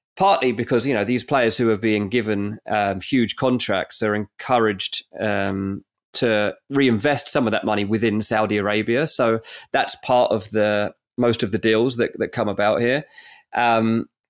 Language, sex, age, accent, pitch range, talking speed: English, male, 20-39, British, 105-125 Hz, 170 wpm